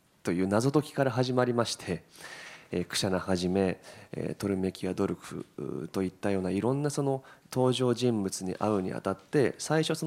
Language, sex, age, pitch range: Japanese, male, 20-39, 100-140 Hz